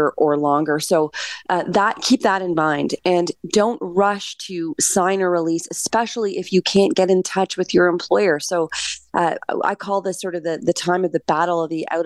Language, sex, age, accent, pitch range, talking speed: English, female, 30-49, American, 160-195 Hz, 210 wpm